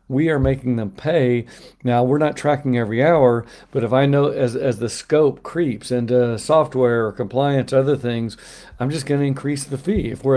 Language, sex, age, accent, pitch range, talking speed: English, male, 50-69, American, 115-140 Hz, 195 wpm